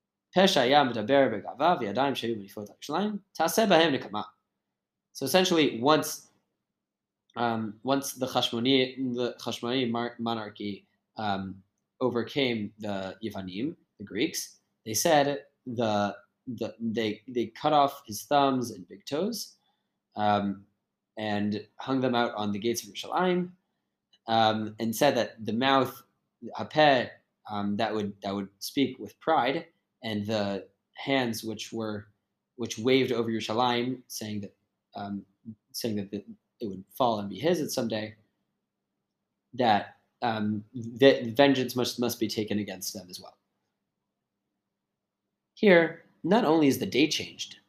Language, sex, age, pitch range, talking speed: English, male, 20-39, 105-135 Hz, 120 wpm